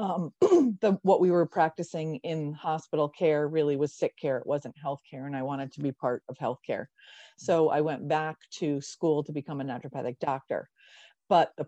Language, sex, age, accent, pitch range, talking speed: English, female, 40-59, American, 140-165 Hz, 200 wpm